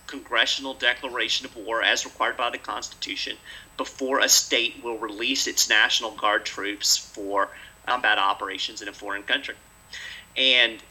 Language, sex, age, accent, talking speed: English, male, 40-59, American, 145 wpm